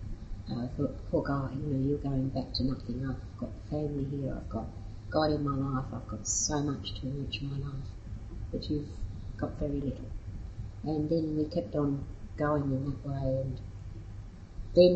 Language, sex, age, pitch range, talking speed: English, female, 50-69, 105-140 Hz, 195 wpm